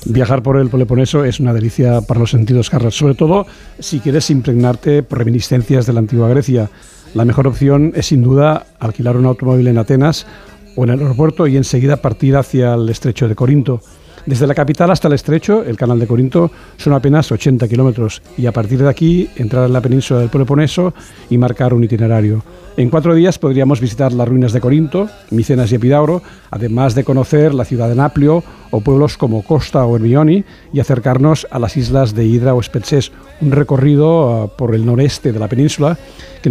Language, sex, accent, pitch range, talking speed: Spanish, male, Spanish, 120-145 Hz, 190 wpm